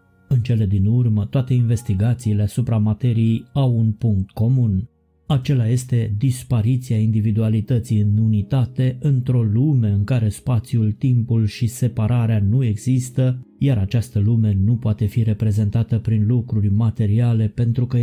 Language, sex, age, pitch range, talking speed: Romanian, male, 20-39, 110-125 Hz, 135 wpm